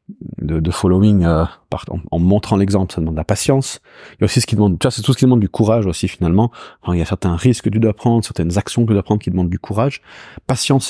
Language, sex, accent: French, male, French